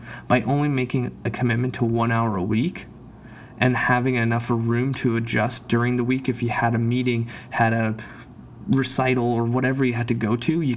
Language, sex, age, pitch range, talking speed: English, male, 20-39, 115-130 Hz, 195 wpm